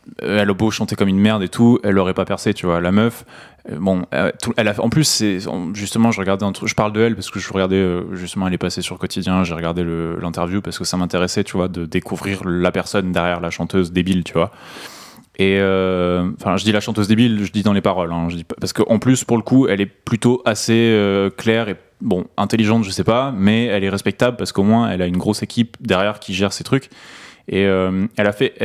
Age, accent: 20-39, French